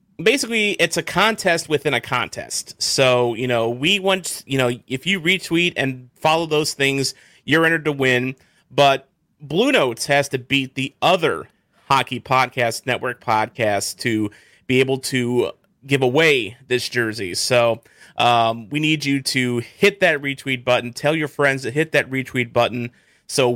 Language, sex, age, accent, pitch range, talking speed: English, male, 30-49, American, 120-150 Hz, 165 wpm